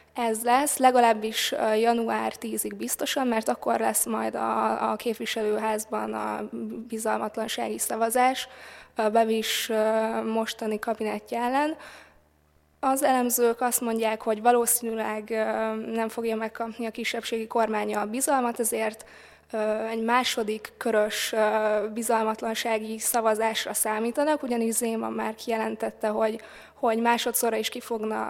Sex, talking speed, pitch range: female, 110 wpm, 220-235 Hz